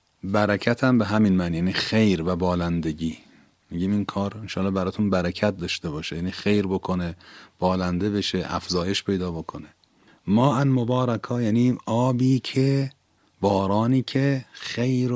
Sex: male